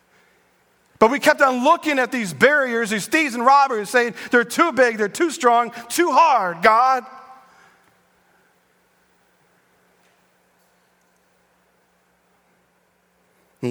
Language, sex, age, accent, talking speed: English, male, 40-59, American, 100 wpm